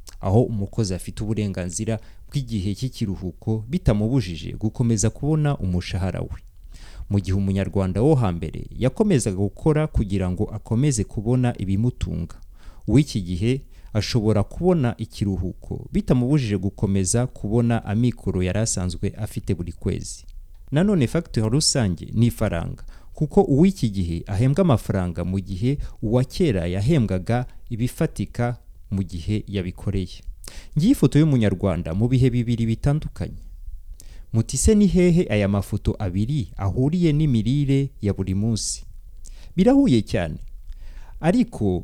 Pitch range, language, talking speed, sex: 95-125 Hz, English, 110 wpm, male